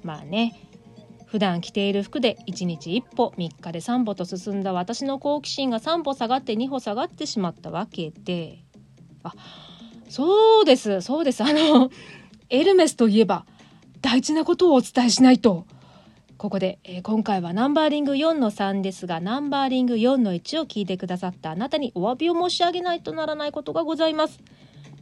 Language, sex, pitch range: Japanese, female, 185-280 Hz